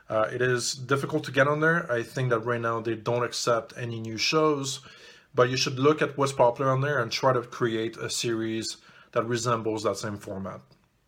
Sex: male